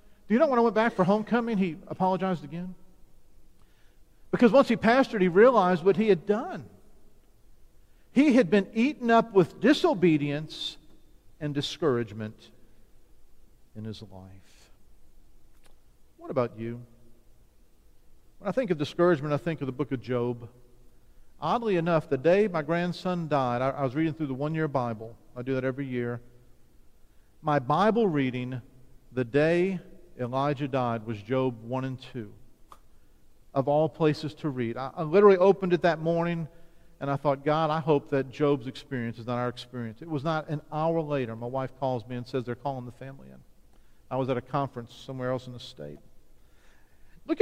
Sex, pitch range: male, 125-175 Hz